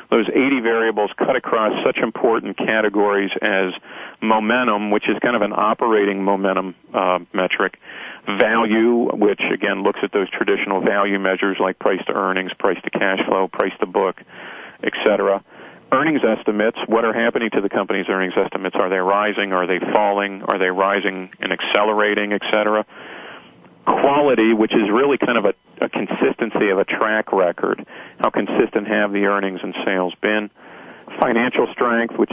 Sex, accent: male, American